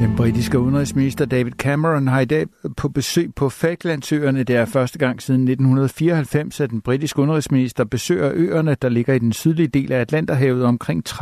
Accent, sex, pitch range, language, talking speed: native, male, 120-145 Hz, Danish, 175 wpm